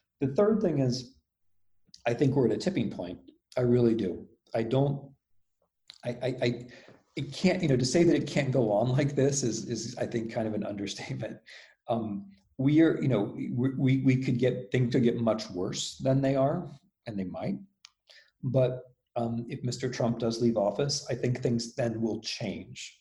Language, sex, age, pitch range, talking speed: English, male, 40-59, 110-130 Hz, 195 wpm